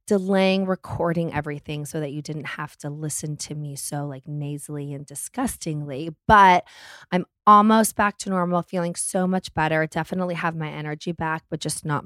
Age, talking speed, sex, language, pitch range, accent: 20-39, 175 wpm, female, English, 155-195 Hz, American